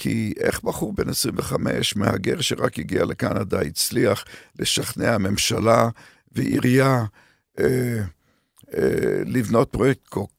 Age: 50-69